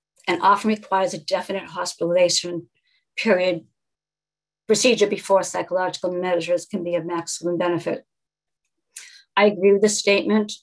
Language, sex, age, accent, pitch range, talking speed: English, female, 50-69, American, 175-205 Hz, 120 wpm